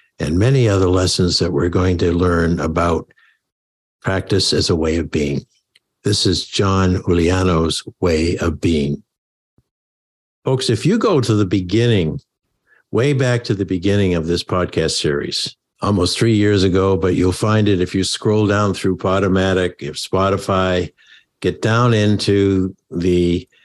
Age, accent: 60-79, American